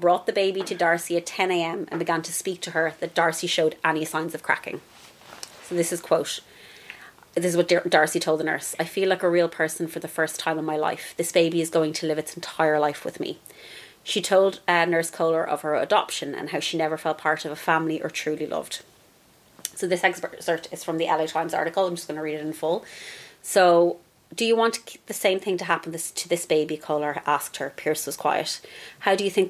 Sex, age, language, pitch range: female, 30-49, English, 155-180 Hz